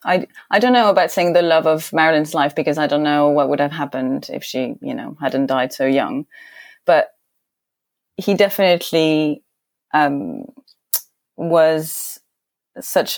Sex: female